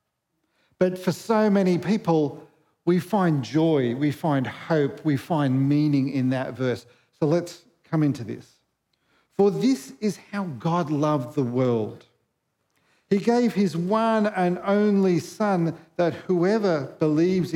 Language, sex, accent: English, male, Australian